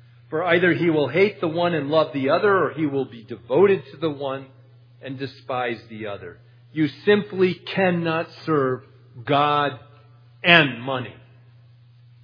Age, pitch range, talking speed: 50-69, 120-150 Hz, 145 wpm